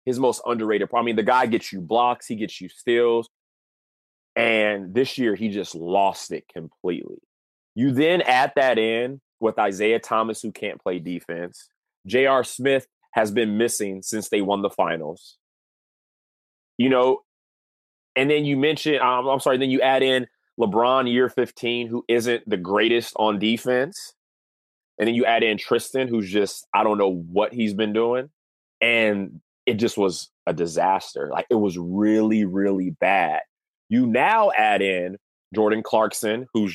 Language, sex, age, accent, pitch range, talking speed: English, male, 30-49, American, 105-125 Hz, 165 wpm